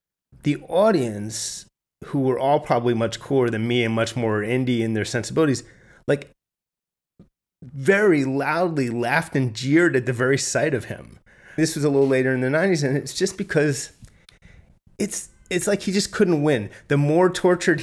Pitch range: 130-170 Hz